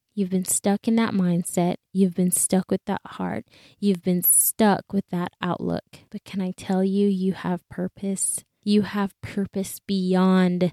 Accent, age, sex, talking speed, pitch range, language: American, 20-39, female, 170 wpm, 190-230 Hz, English